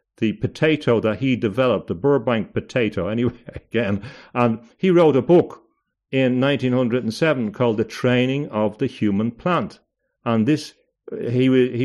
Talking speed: 135 wpm